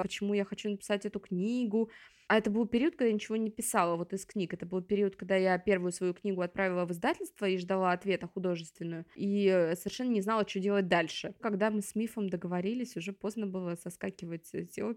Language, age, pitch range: Russian, 20-39, 185-255 Hz